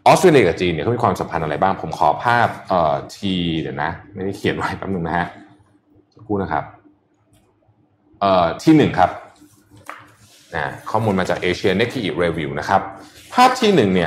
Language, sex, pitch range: Thai, male, 95-130 Hz